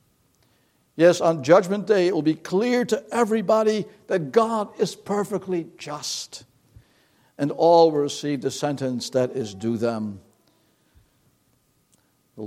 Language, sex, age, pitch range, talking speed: English, male, 60-79, 115-145 Hz, 125 wpm